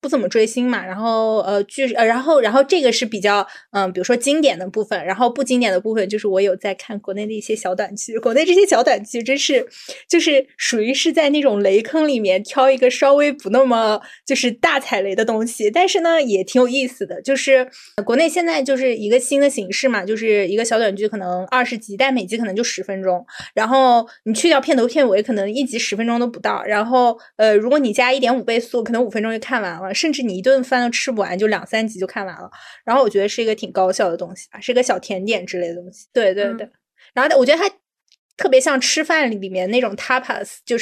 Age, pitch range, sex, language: 20-39, 200-265 Hz, female, Chinese